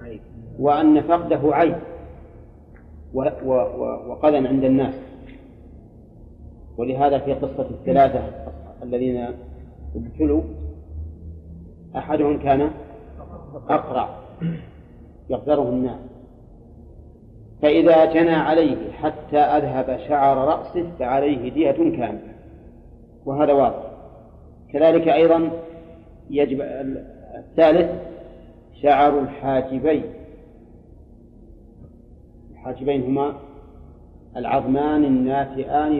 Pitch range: 115-150 Hz